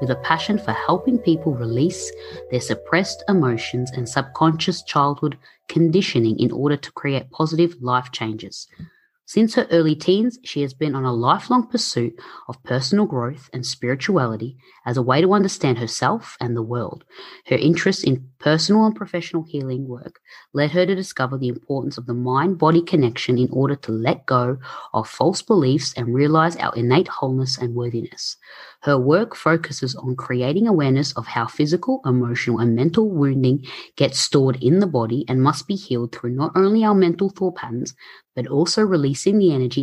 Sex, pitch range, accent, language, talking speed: female, 125-175 Hz, Australian, English, 170 wpm